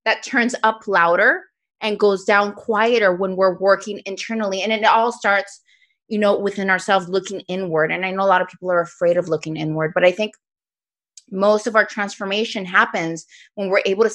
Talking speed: 195 wpm